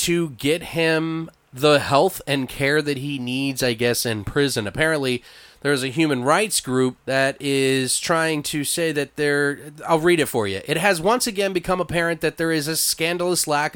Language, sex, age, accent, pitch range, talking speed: English, male, 30-49, American, 130-160 Hz, 190 wpm